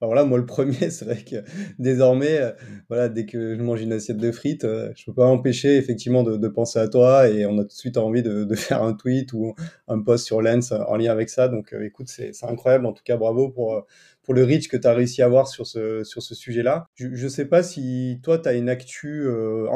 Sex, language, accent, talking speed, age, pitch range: male, French, French, 250 wpm, 30-49, 110-130 Hz